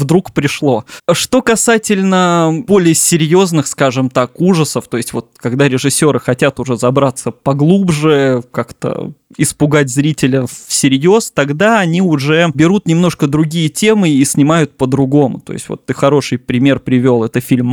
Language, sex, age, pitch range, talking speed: Russian, male, 20-39, 135-175 Hz, 140 wpm